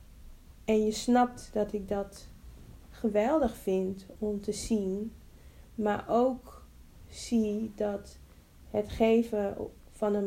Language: Dutch